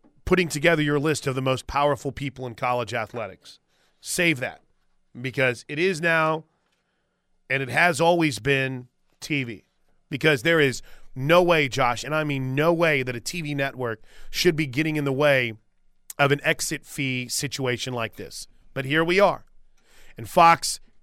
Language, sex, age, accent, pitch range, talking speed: English, male, 30-49, American, 130-170 Hz, 165 wpm